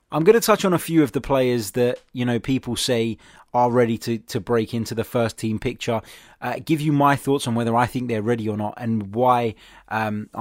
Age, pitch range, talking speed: 20-39, 110-125 Hz, 235 wpm